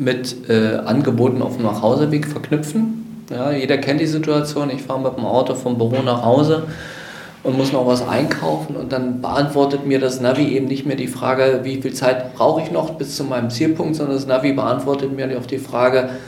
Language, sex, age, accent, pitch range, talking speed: German, male, 40-59, German, 125-140 Hz, 200 wpm